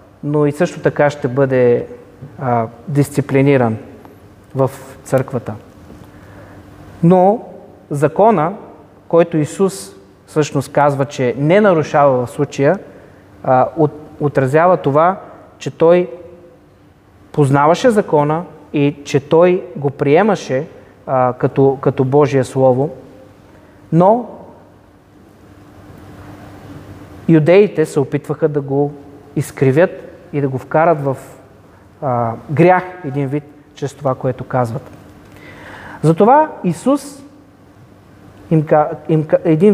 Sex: male